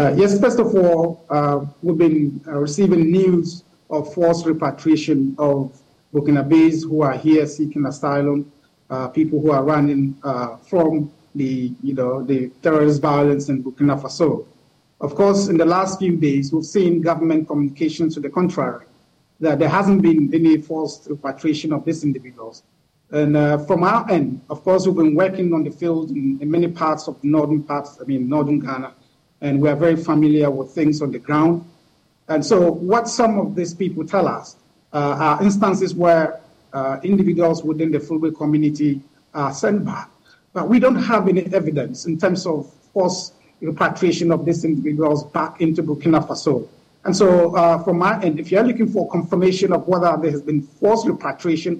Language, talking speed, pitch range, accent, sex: English, 180 wpm, 145-180 Hz, Nigerian, male